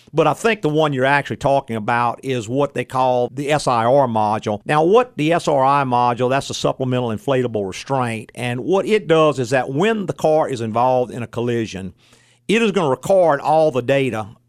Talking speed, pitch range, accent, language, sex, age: 200 wpm, 125-155 Hz, American, English, male, 50-69